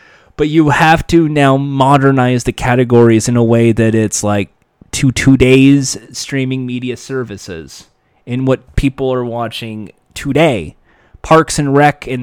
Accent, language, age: American, English, 20-39